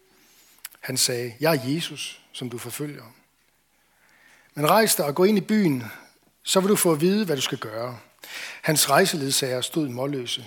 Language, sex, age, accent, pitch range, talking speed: Danish, male, 60-79, native, 130-165 Hz, 165 wpm